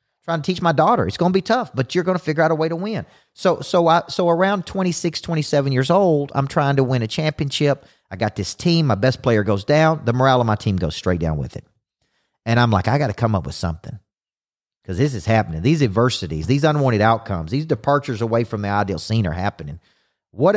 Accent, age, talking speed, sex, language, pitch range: American, 40-59, 245 wpm, male, English, 105-155 Hz